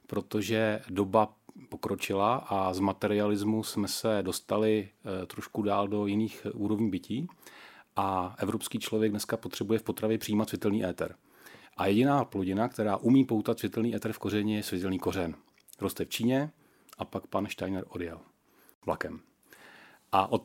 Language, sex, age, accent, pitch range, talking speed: Czech, male, 40-59, native, 100-110 Hz, 145 wpm